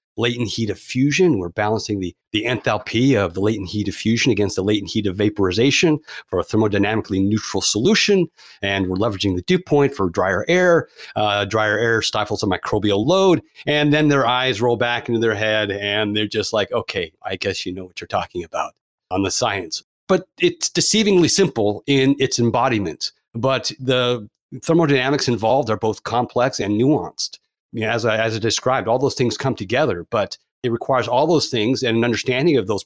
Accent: American